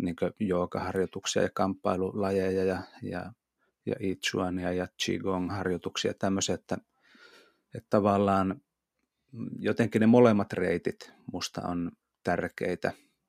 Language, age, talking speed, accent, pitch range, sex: Finnish, 30-49, 90 wpm, native, 90-105 Hz, male